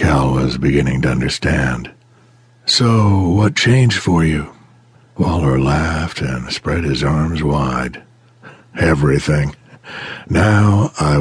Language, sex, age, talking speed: English, male, 60-79, 95 wpm